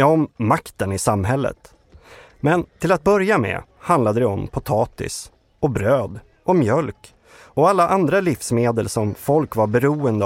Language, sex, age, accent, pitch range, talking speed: Swedish, male, 30-49, native, 105-145 Hz, 150 wpm